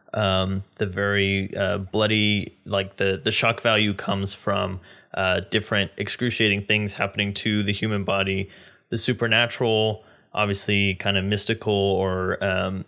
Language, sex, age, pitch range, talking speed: English, male, 20-39, 100-115 Hz, 135 wpm